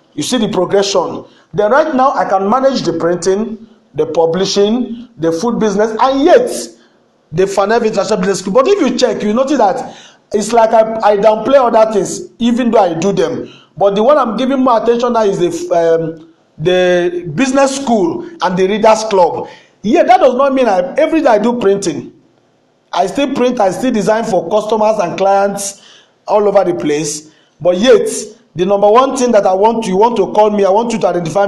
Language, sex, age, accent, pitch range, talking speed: English, male, 50-69, Nigerian, 185-245 Hz, 200 wpm